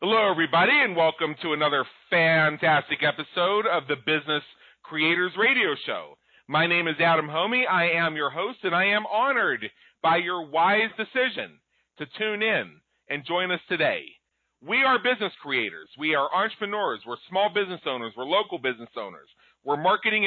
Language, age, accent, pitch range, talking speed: English, 40-59, American, 150-190 Hz, 165 wpm